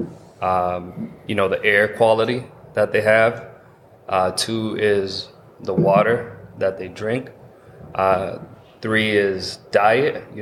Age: 20-39